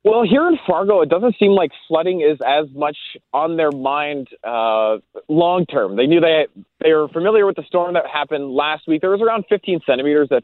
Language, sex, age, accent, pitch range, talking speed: English, male, 20-39, American, 135-180 Hz, 220 wpm